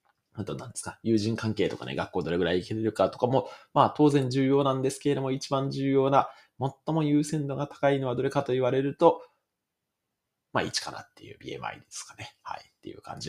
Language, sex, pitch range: Japanese, male, 105-140 Hz